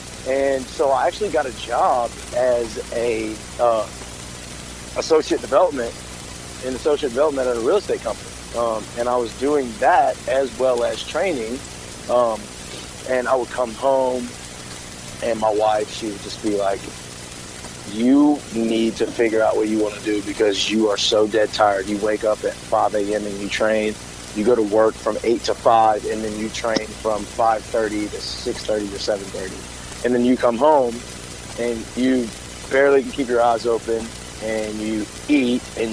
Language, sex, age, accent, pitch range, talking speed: English, male, 30-49, American, 105-125 Hz, 180 wpm